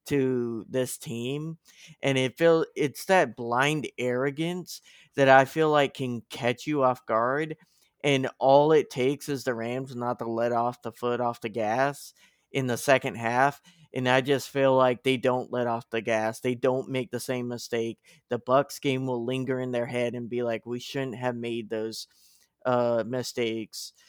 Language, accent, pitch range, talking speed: English, American, 120-135 Hz, 185 wpm